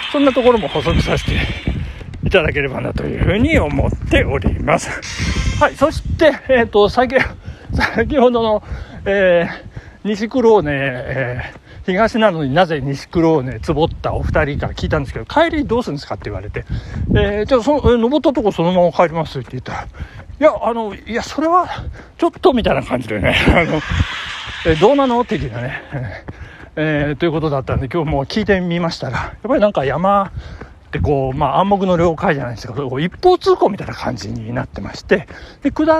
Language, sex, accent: Japanese, male, native